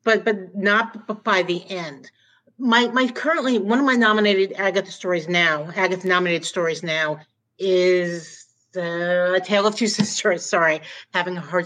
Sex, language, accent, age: female, English, American, 50-69